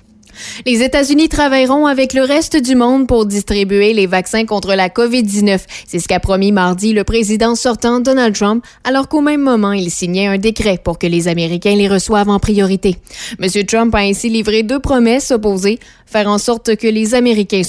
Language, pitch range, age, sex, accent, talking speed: French, 195-245 Hz, 20-39, female, Canadian, 185 wpm